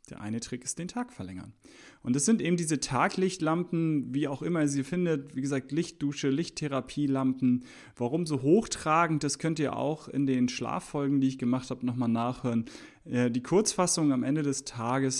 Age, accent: 30-49, German